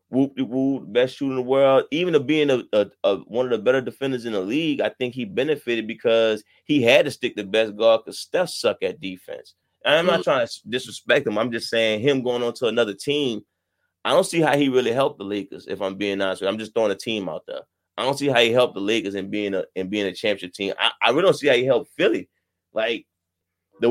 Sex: male